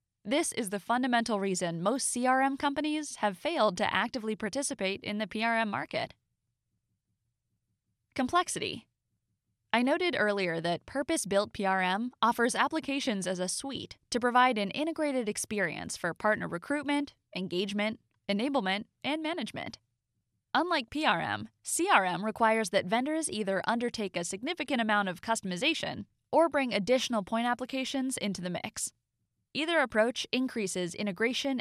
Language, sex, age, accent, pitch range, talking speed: English, female, 20-39, American, 195-275 Hz, 125 wpm